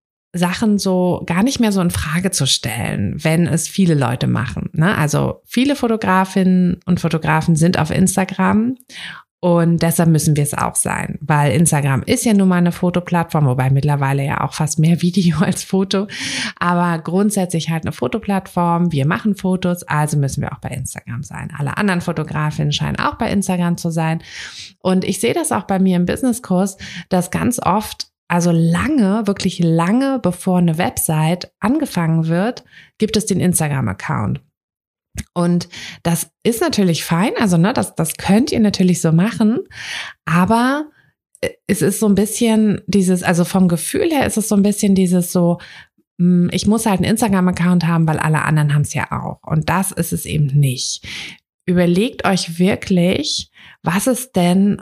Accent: German